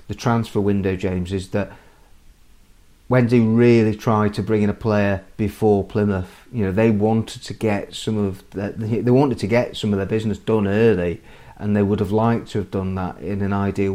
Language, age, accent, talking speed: English, 30-49, British, 200 wpm